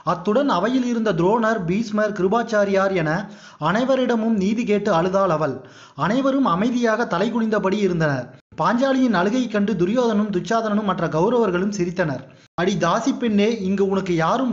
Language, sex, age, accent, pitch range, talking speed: Tamil, male, 30-49, native, 180-225 Hz, 130 wpm